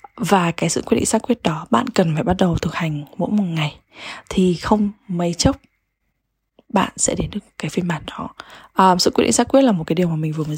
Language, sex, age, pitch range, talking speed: English, female, 20-39, 170-220 Hz, 250 wpm